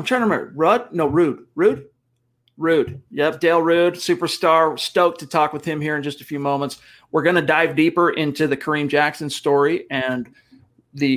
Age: 40-59